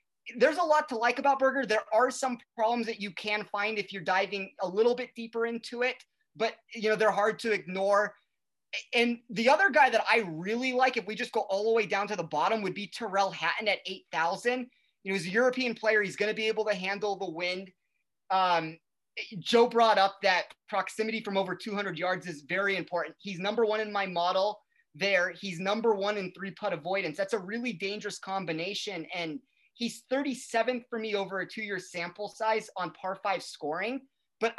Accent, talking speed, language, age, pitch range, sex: American, 205 wpm, English, 30-49, 190-235 Hz, male